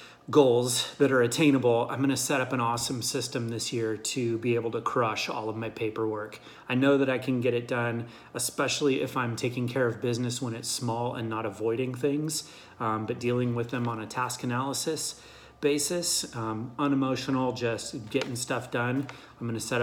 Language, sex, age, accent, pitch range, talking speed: English, male, 30-49, American, 115-130 Hz, 195 wpm